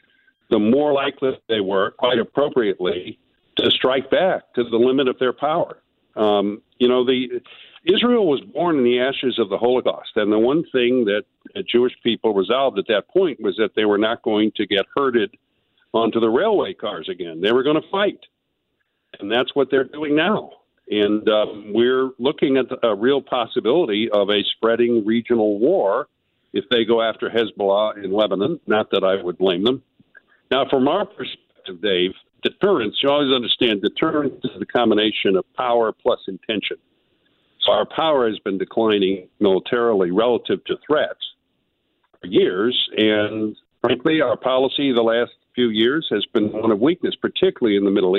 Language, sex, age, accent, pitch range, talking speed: English, male, 50-69, American, 110-140 Hz, 170 wpm